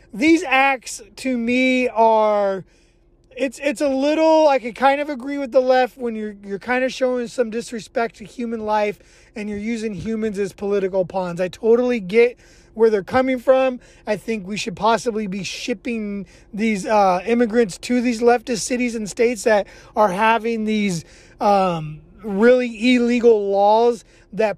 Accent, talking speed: American, 165 wpm